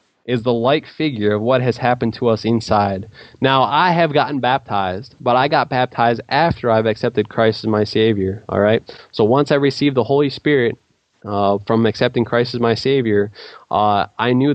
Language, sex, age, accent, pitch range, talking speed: English, male, 20-39, American, 110-135 Hz, 190 wpm